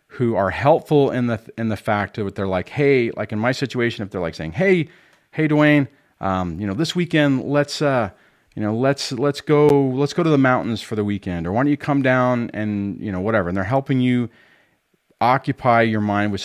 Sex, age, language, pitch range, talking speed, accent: male, 40-59, English, 90-130 Hz, 225 wpm, American